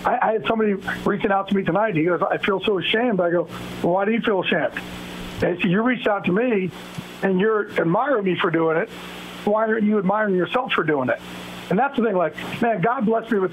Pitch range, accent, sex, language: 140-225 Hz, American, male, English